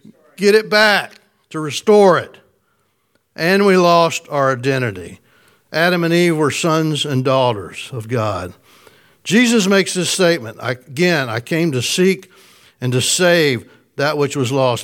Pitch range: 125-170 Hz